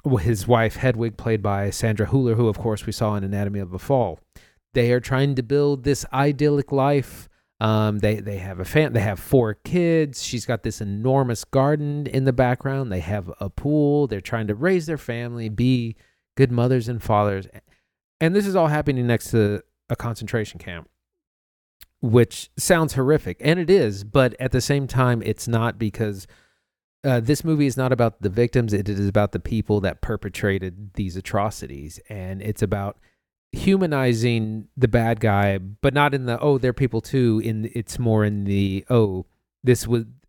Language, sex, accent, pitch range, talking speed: English, male, American, 100-130 Hz, 180 wpm